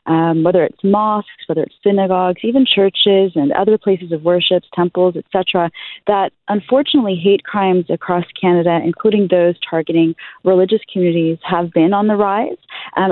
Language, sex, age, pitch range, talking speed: English, female, 30-49, 165-205 Hz, 155 wpm